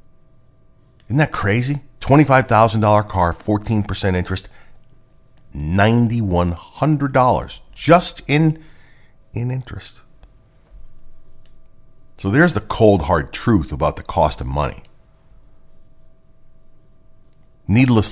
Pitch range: 80-125 Hz